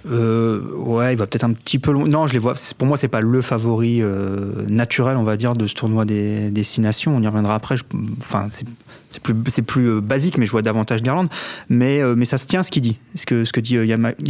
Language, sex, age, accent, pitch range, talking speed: French, male, 30-49, French, 110-135 Hz, 265 wpm